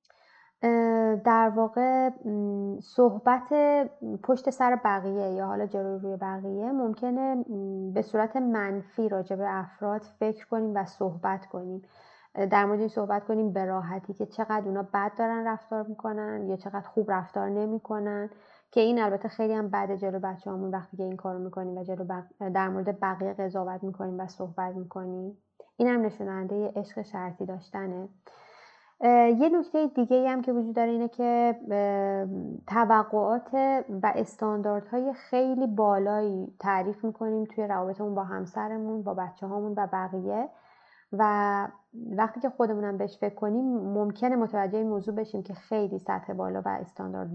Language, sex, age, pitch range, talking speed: Persian, female, 20-39, 195-225 Hz, 145 wpm